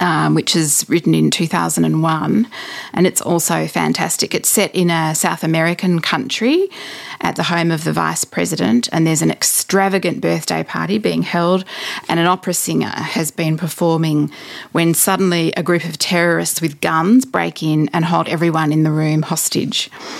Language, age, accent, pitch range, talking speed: English, 30-49, Australian, 160-185 Hz, 165 wpm